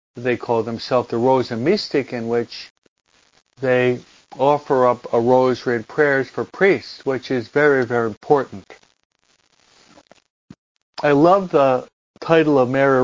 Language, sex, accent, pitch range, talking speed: English, male, American, 120-145 Hz, 130 wpm